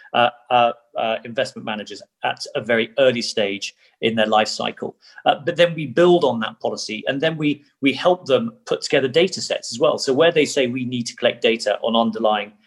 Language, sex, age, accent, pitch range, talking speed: English, male, 40-59, British, 110-145 Hz, 215 wpm